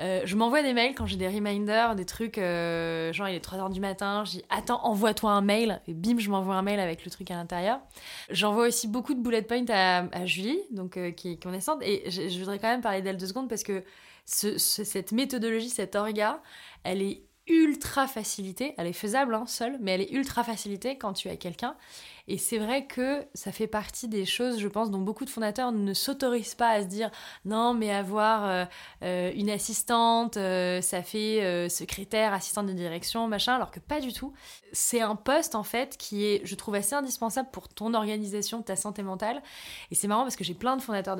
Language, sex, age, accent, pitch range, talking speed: French, female, 20-39, French, 195-235 Hz, 225 wpm